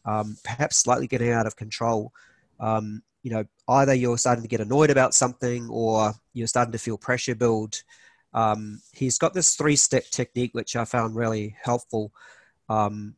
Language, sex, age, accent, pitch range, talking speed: English, male, 40-59, Australian, 115-135 Hz, 175 wpm